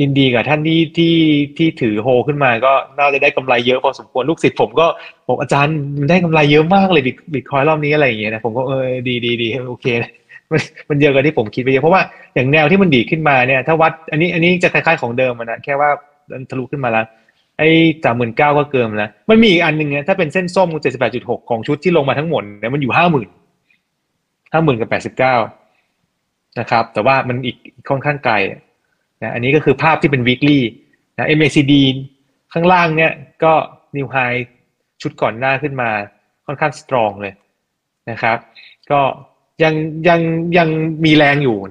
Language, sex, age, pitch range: Thai, male, 20-39, 120-155 Hz